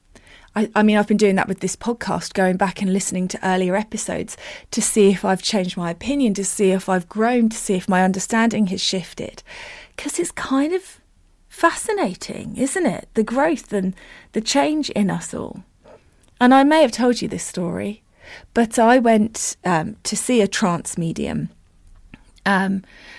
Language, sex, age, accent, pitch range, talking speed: English, female, 30-49, British, 195-255 Hz, 180 wpm